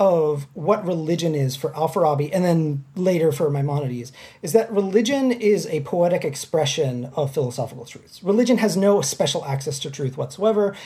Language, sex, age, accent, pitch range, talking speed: English, male, 30-49, American, 145-200 Hz, 160 wpm